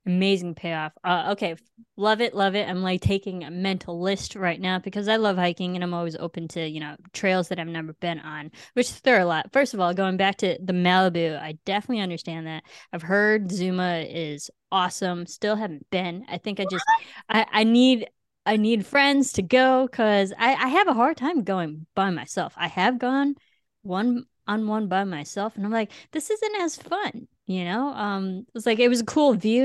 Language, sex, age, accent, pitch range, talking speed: English, female, 20-39, American, 175-220 Hz, 215 wpm